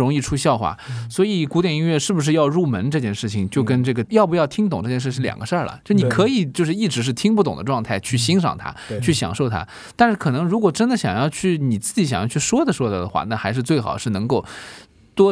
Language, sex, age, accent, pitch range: Chinese, male, 20-39, native, 115-185 Hz